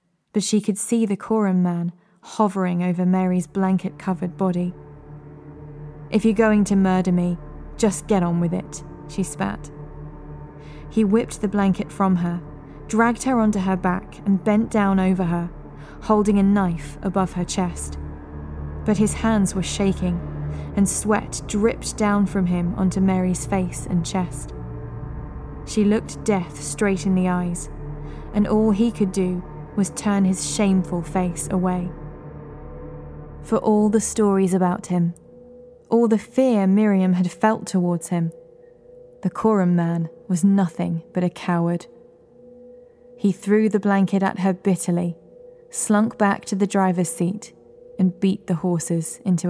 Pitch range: 175-215 Hz